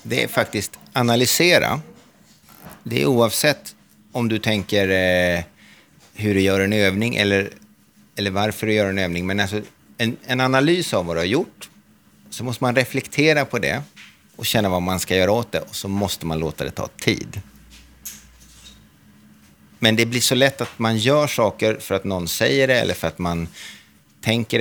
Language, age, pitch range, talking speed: Swedish, 30-49, 90-115 Hz, 175 wpm